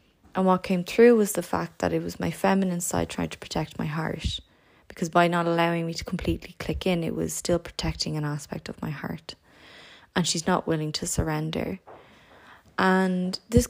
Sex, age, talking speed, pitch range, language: female, 20-39, 195 wpm, 155-180 Hz, English